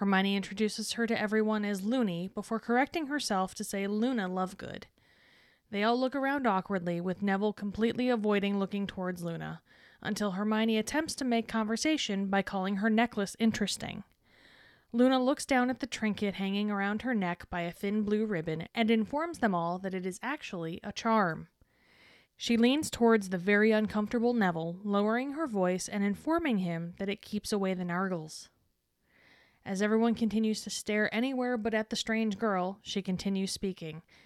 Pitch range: 190-230 Hz